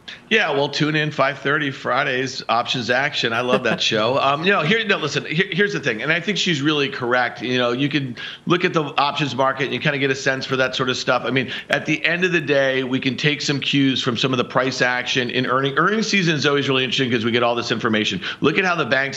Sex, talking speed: male, 270 wpm